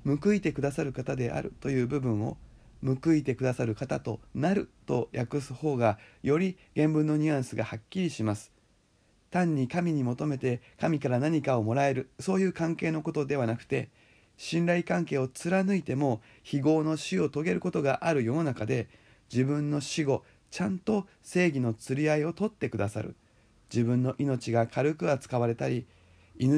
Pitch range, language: 110-150 Hz, Japanese